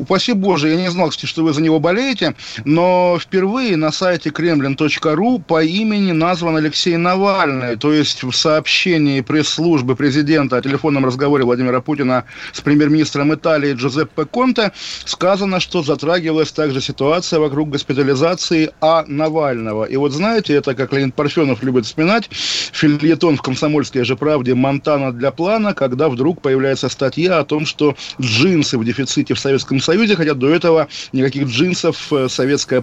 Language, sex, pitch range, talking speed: Russian, male, 135-165 Hz, 150 wpm